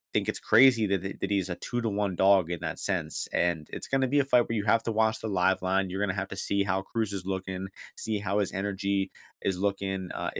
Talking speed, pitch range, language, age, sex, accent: 265 wpm, 95-105 Hz, English, 20-39, male, American